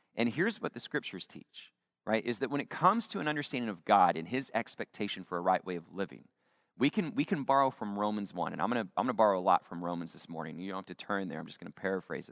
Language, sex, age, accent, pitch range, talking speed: English, male, 30-49, American, 105-150 Hz, 275 wpm